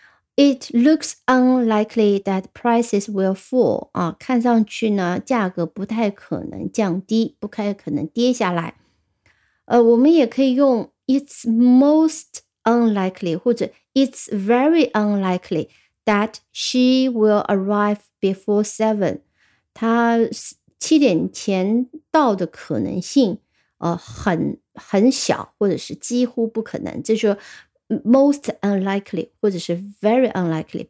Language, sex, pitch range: Chinese, female, 205-260 Hz